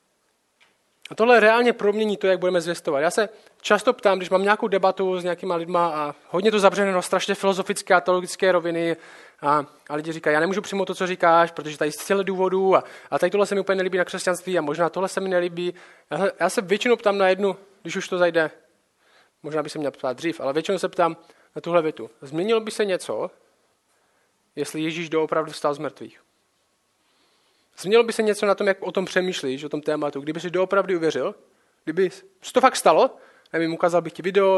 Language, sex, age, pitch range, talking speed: Czech, male, 20-39, 160-195 Hz, 210 wpm